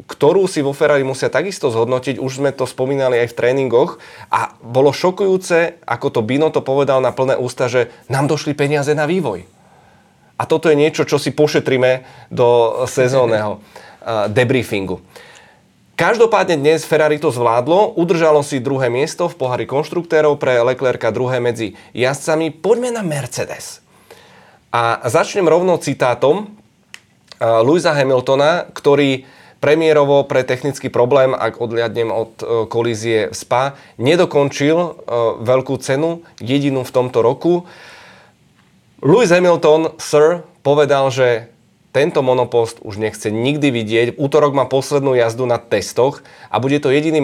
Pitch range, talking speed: 125-150 Hz, 135 wpm